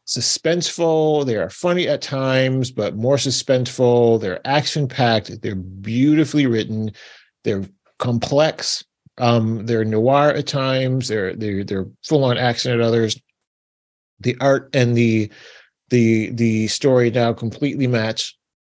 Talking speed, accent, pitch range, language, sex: 120 wpm, American, 110-130 Hz, English, male